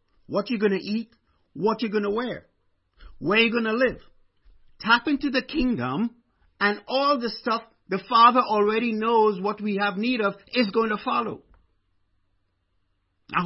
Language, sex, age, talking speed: English, male, 50-69, 165 wpm